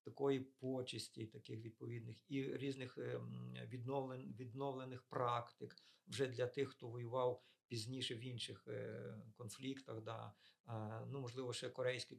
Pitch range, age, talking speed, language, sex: 115-135 Hz, 50-69, 115 wpm, Ukrainian, male